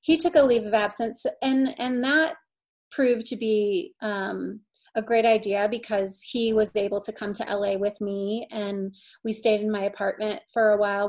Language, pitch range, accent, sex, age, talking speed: English, 210-250 Hz, American, female, 30-49, 190 wpm